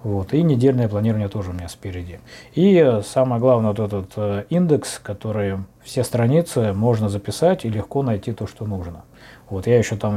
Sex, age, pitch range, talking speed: male, 20-39, 100-125 Hz, 175 wpm